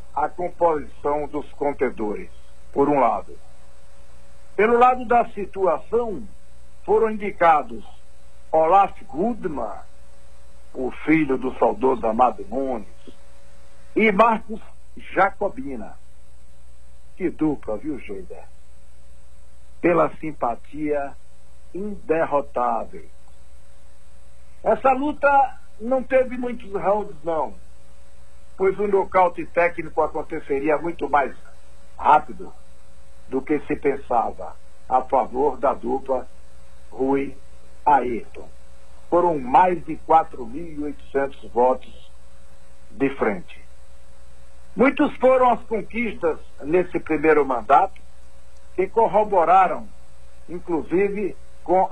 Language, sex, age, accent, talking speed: Portuguese, male, 60-79, Brazilian, 85 wpm